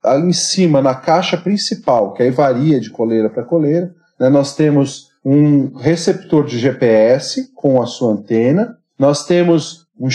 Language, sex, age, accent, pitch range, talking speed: Portuguese, male, 40-59, Brazilian, 155-215 Hz, 160 wpm